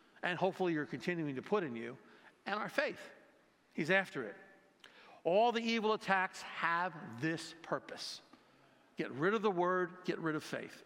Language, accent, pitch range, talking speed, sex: English, American, 145-185 Hz, 165 wpm, male